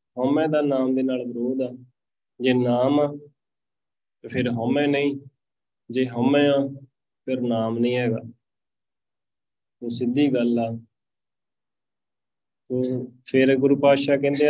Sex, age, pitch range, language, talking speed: male, 20-39, 120-135 Hz, Punjabi, 115 wpm